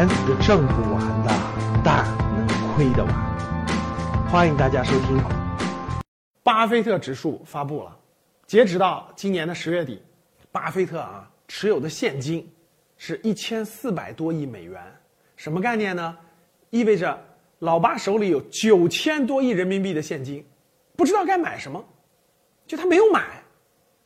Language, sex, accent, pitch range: Chinese, male, native, 170-235 Hz